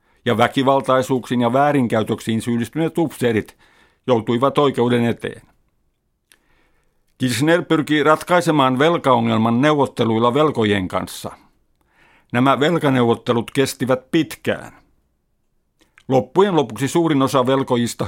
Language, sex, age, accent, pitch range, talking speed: Finnish, male, 50-69, native, 120-145 Hz, 85 wpm